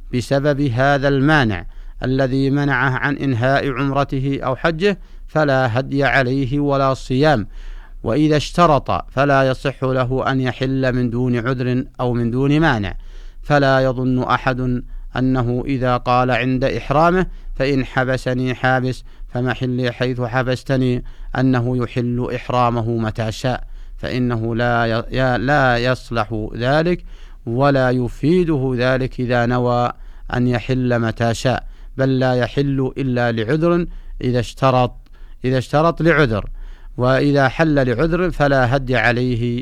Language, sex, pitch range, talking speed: Arabic, male, 125-135 Hz, 120 wpm